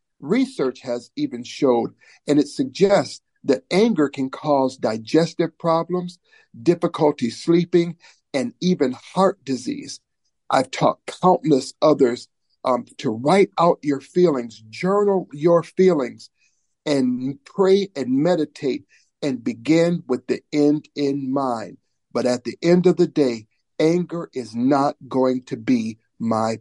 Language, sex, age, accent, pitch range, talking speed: English, male, 50-69, American, 130-180 Hz, 130 wpm